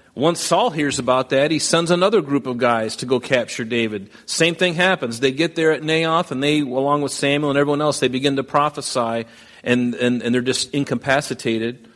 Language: English